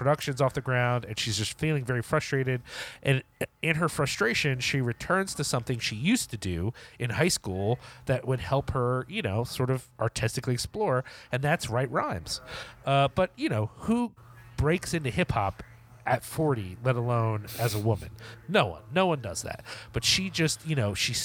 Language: English